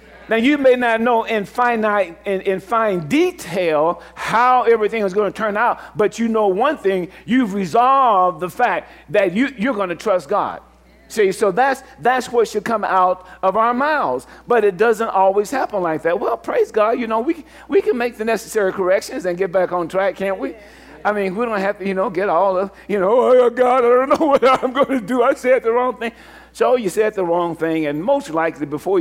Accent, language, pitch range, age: American, English, 180-230 Hz, 50-69